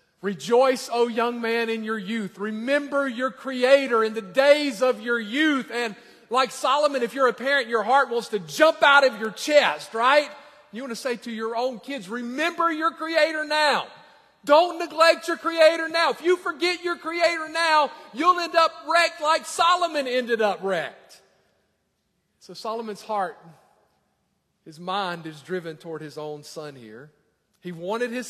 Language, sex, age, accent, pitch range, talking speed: English, male, 40-59, American, 185-270 Hz, 170 wpm